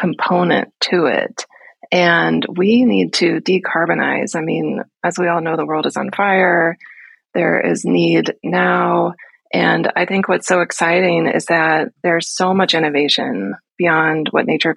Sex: female